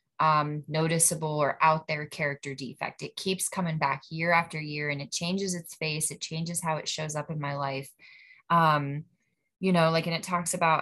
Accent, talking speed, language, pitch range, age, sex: American, 200 wpm, English, 160-195 Hz, 20-39, female